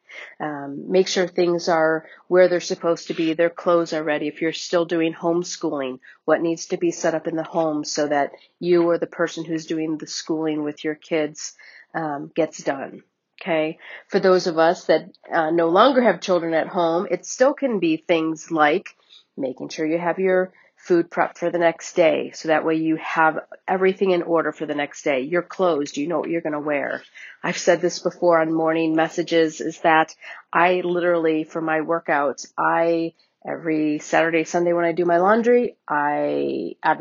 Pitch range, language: 155-180 Hz, English